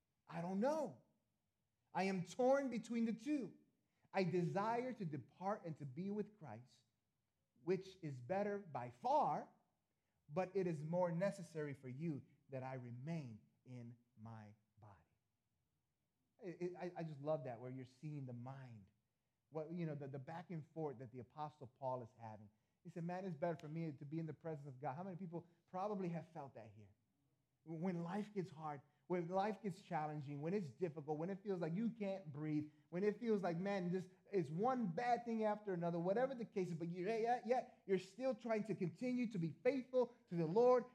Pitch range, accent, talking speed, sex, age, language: 145-205 Hz, American, 195 wpm, male, 30-49, English